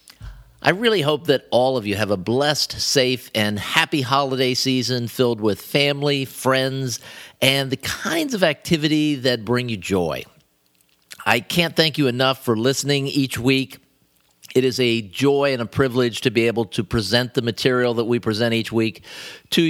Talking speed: 175 wpm